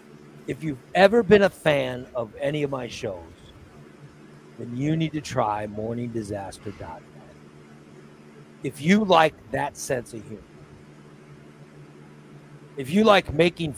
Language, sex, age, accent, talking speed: English, male, 60-79, American, 120 wpm